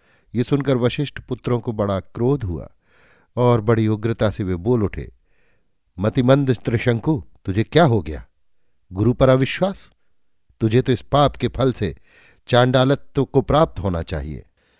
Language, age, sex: Hindi, 50-69, male